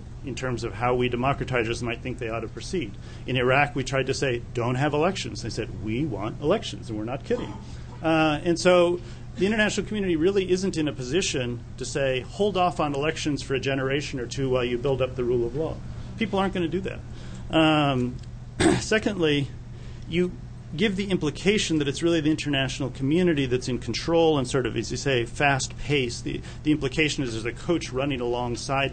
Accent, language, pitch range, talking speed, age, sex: American, English, 115-150 Hz, 200 wpm, 40-59, male